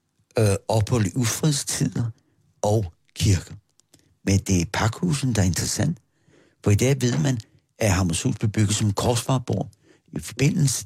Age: 60-79